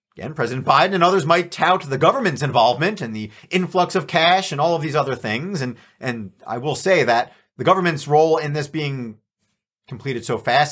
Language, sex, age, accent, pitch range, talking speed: English, male, 40-59, American, 140-185 Hz, 200 wpm